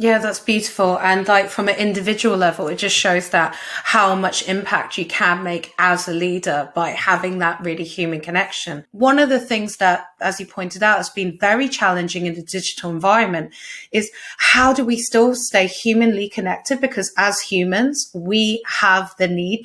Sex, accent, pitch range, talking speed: female, British, 180-220 Hz, 185 wpm